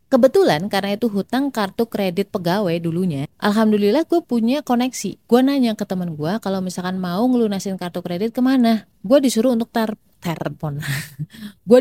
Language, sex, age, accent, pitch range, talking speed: Indonesian, female, 30-49, native, 165-215 Hz, 145 wpm